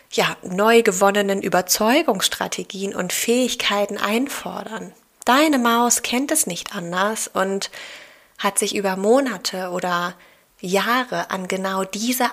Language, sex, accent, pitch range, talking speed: German, female, German, 185-225 Hz, 110 wpm